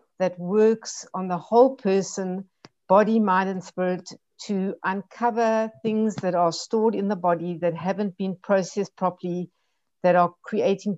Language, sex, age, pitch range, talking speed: English, female, 60-79, 175-210 Hz, 150 wpm